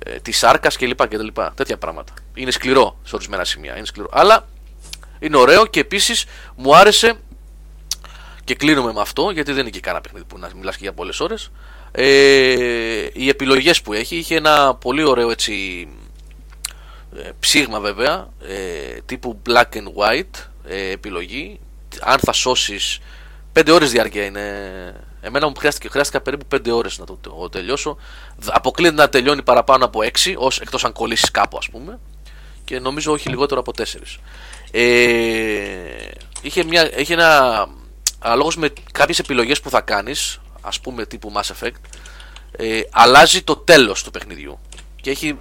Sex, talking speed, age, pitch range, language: male, 150 wpm, 30-49, 100-145 Hz, Greek